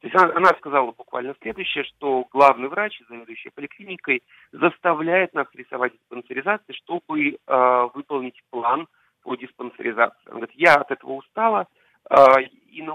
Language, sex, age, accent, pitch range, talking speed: Russian, male, 40-59, native, 130-200 Hz, 140 wpm